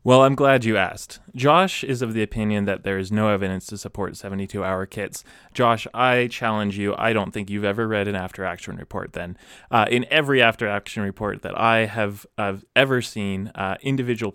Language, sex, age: English, male, 20-39